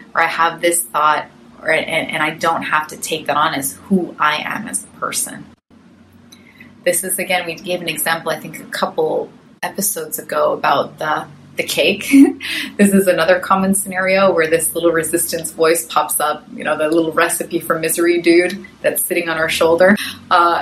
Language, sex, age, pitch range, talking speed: English, female, 30-49, 165-255 Hz, 190 wpm